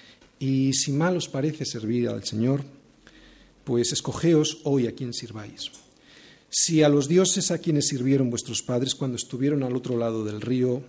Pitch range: 130-180 Hz